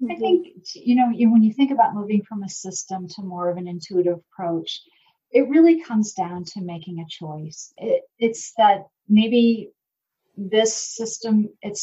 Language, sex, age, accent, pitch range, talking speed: English, female, 40-59, American, 180-220 Hz, 160 wpm